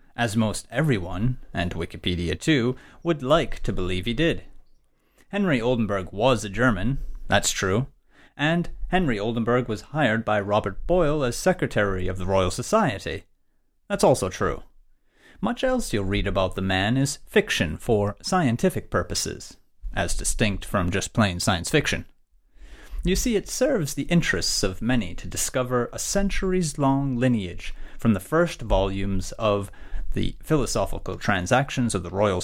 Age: 30-49